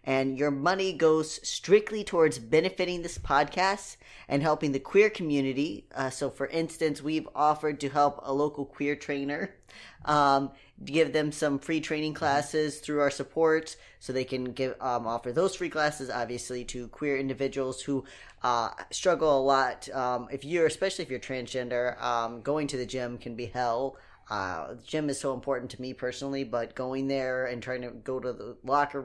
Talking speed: 180 wpm